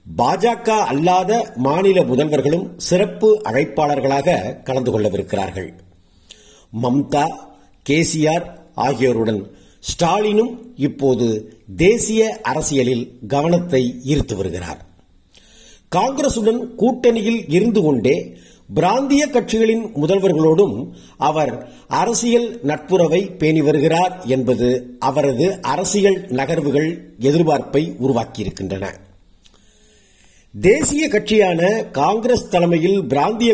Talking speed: 70 wpm